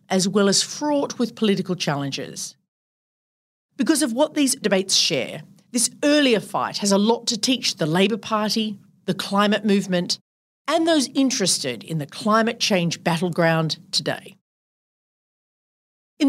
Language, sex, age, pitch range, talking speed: English, female, 40-59, 175-240 Hz, 135 wpm